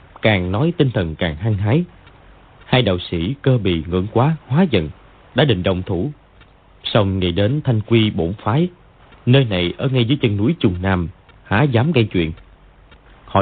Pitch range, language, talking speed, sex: 95-140 Hz, Vietnamese, 185 wpm, male